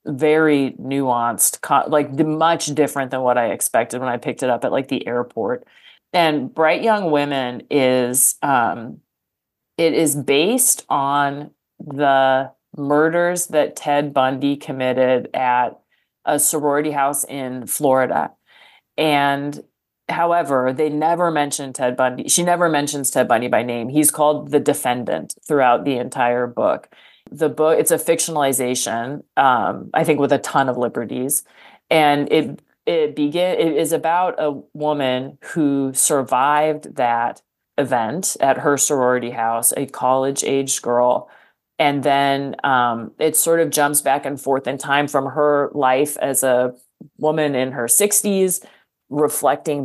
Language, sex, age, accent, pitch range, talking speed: English, female, 30-49, American, 130-150 Hz, 140 wpm